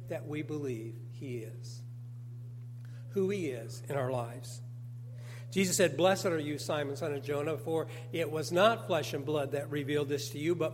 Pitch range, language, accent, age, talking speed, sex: 120-155 Hz, English, American, 60-79, 185 wpm, male